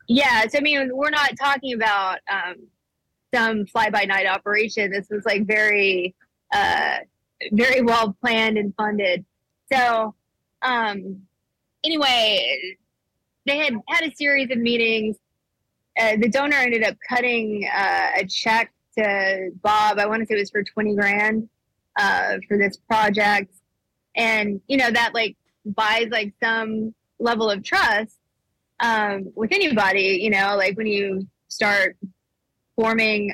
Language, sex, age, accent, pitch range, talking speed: English, female, 20-39, American, 200-240 Hz, 140 wpm